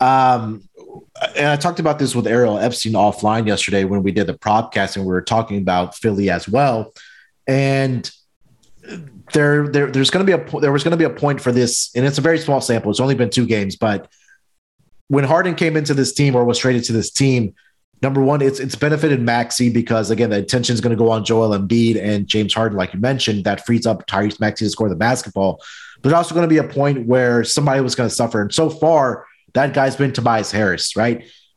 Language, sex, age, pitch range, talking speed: English, male, 30-49, 115-145 Hz, 225 wpm